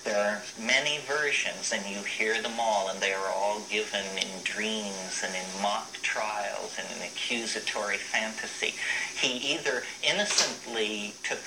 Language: English